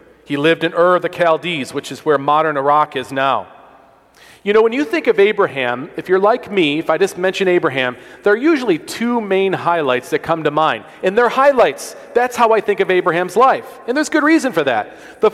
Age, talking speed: 40-59, 225 wpm